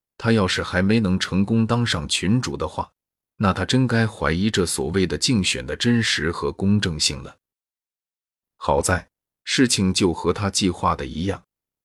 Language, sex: Chinese, male